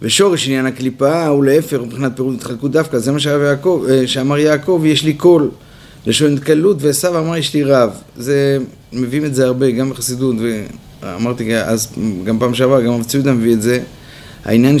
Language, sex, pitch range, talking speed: Hebrew, male, 120-145 Hz, 170 wpm